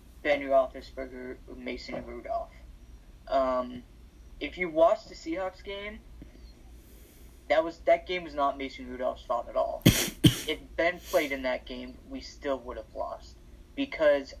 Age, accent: 20-39, American